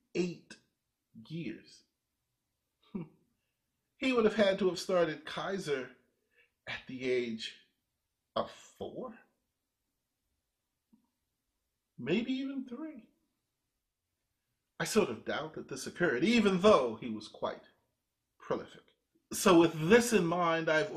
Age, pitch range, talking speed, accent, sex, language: 40-59, 145-205 Hz, 105 wpm, American, male, English